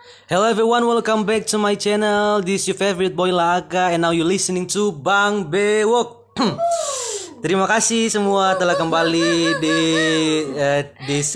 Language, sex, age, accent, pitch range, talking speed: Indonesian, male, 20-39, native, 135-175 Hz, 150 wpm